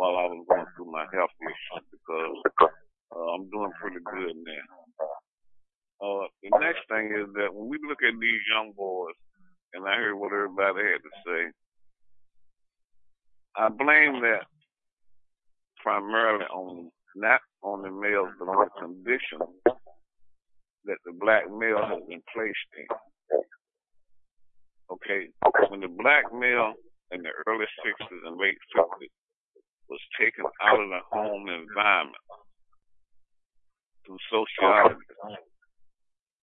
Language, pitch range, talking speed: English, 90-115 Hz, 130 wpm